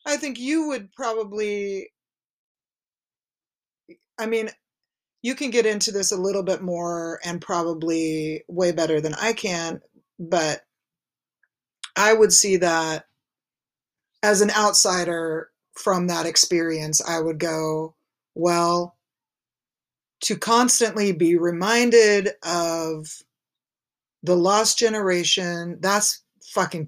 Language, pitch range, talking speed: English, 170-210 Hz, 105 wpm